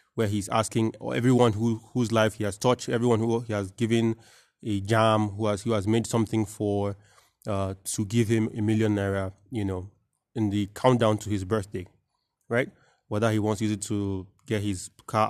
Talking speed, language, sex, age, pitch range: 180 wpm, English, male, 20-39, 105-120 Hz